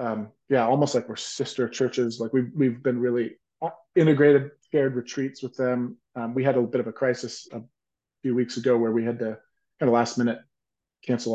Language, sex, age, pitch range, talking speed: English, male, 30-49, 115-130 Hz, 200 wpm